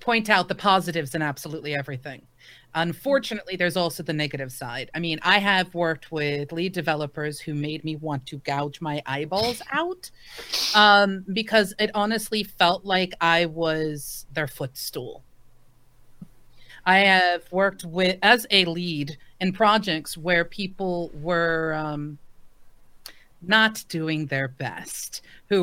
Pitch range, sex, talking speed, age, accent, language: 150-195 Hz, female, 135 wpm, 40-59, American, English